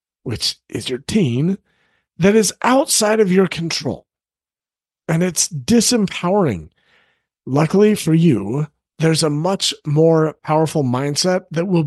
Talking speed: 120 wpm